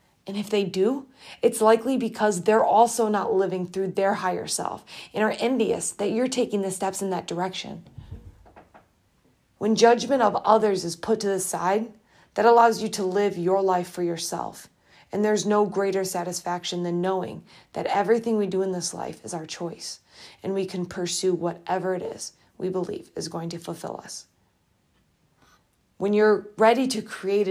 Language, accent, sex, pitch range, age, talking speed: English, American, female, 180-220 Hz, 30-49, 175 wpm